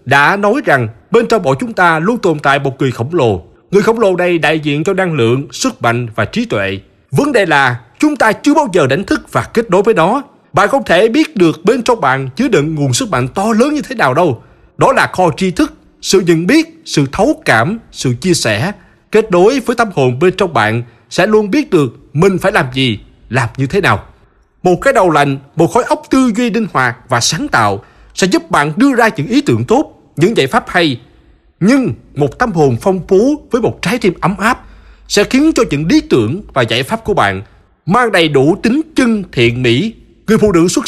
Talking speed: 230 wpm